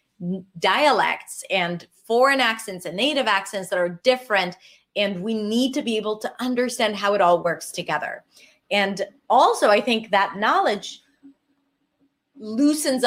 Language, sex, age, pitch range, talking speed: English, female, 30-49, 185-240 Hz, 140 wpm